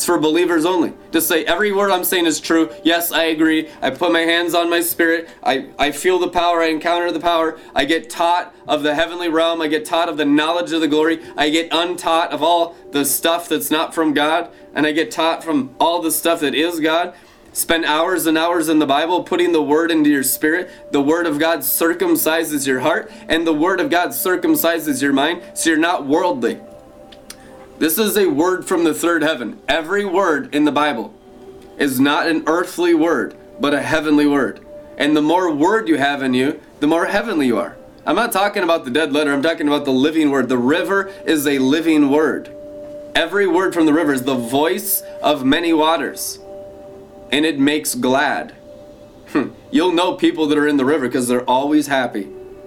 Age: 20-39